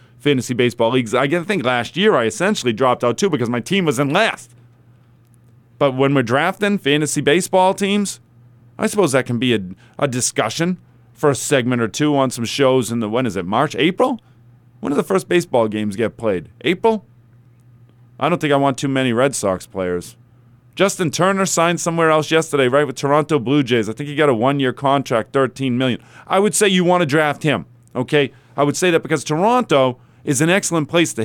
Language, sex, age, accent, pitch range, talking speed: English, male, 40-59, American, 120-155 Hz, 205 wpm